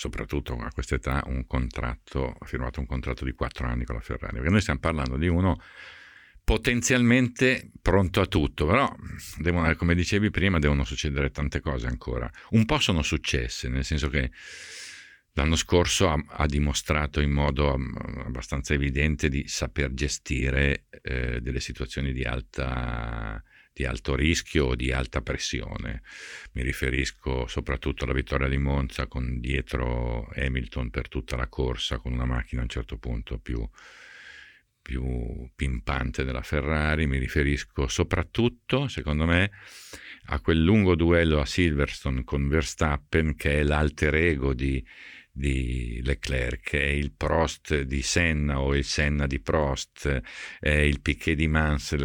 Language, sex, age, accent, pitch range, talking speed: Italian, male, 50-69, native, 65-80 Hz, 145 wpm